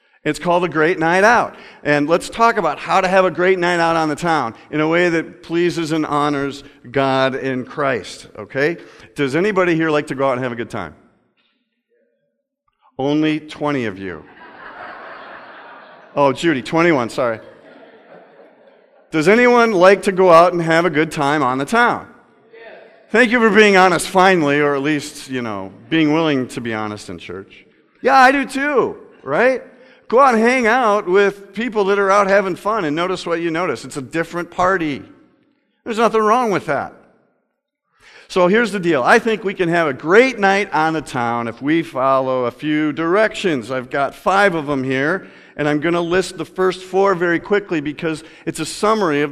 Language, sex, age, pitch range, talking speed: English, male, 50-69, 150-205 Hz, 190 wpm